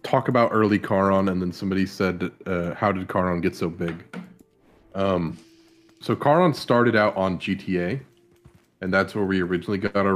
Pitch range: 90-110 Hz